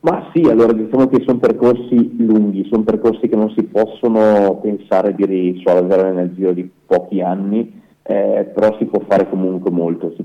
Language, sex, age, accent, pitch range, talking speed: Italian, male, 30-49, native, 90-105 Hz, 175 wpm